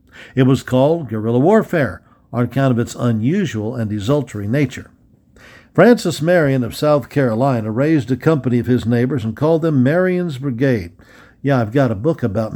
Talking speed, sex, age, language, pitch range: 165 wpm, male, 60-79, English, 115-150 Hz